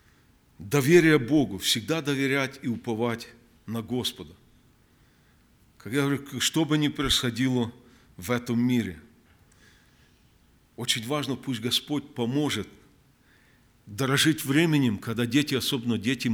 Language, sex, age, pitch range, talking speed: Russian, male, 50-69, 115-140 Hz, 105 wpm